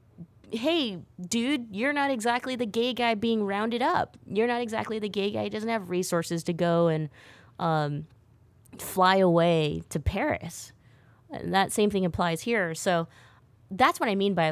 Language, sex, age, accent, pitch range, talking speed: English, female, 20-39, American, 150-190 Hz, 165 wpm